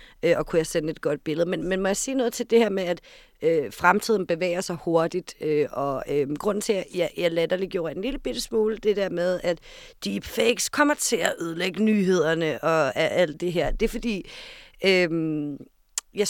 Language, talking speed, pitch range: Danish, 205 wpm, 160-220 Hz